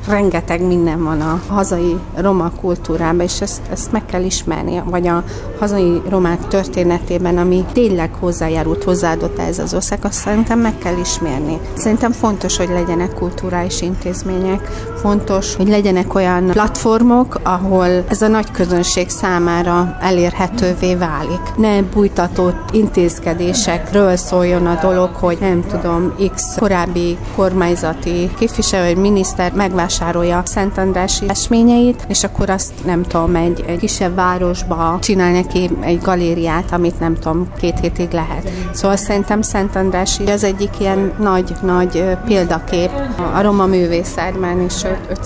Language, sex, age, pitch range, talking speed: Hungarian, female, 40-59, 175-195 Hz, 135 wpm